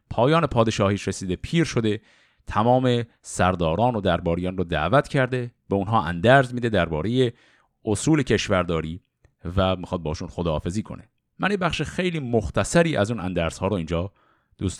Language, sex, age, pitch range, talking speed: Persian, male, 50-69, 90-130 Hz, 140 wpm